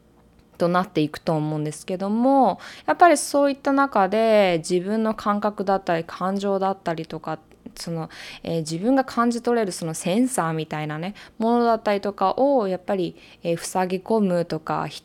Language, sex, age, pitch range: Japanese, female, 20-39, 160-220 Hz